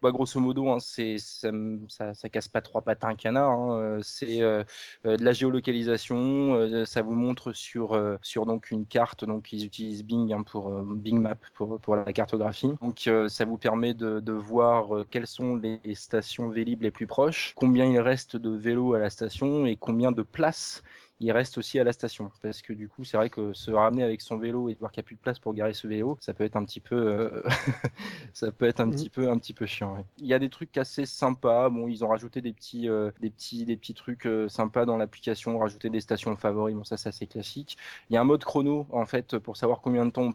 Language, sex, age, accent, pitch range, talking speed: French, male, 20-39, French, 110-120 Hz, 250 wpm